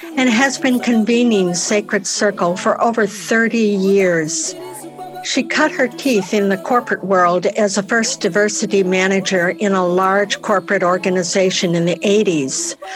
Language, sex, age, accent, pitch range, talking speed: English, female, 60-79, American, 190-225 Hz, 145 wpm